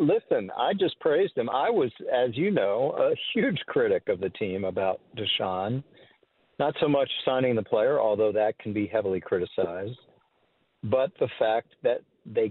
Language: English